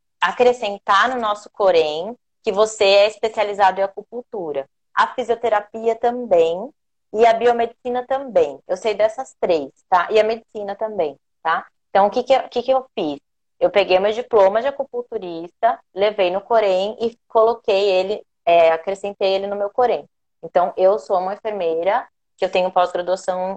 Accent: Brazilian